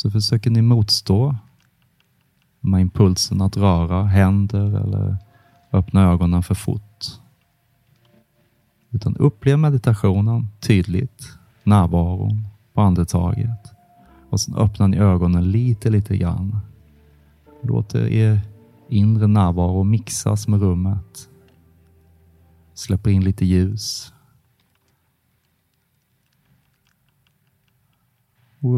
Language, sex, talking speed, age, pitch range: English, male, 85 wpm, 30-49, 95-115 Hz